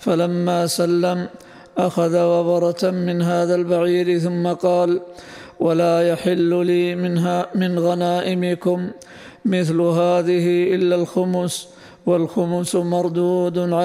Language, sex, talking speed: Arabic, male, 90 wpm